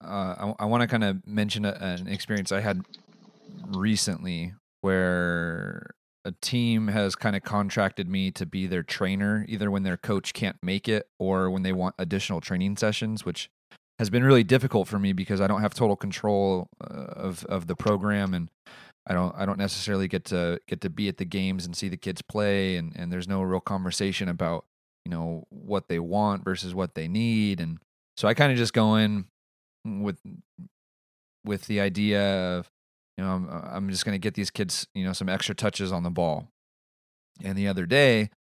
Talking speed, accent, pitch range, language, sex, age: 195 wpm, American, 90-105 Hz, English, male, 30-49